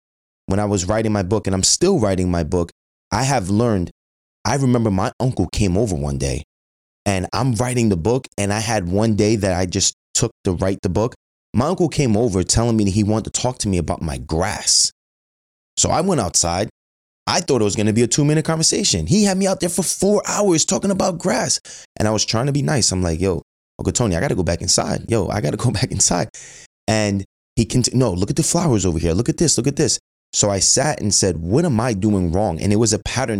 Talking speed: 250 wpm